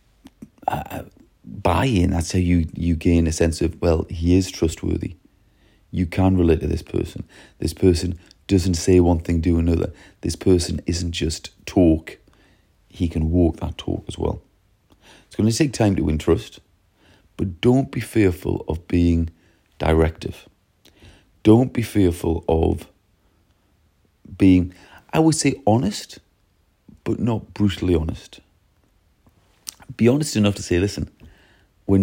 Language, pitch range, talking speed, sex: English, 80-95 Hz, 140 wpm, male